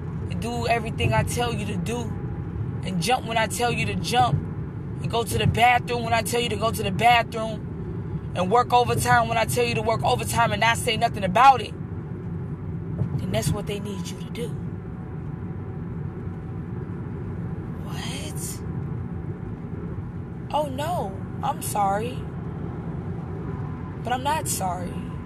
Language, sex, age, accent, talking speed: English, female, 20-39, American, 145 wpm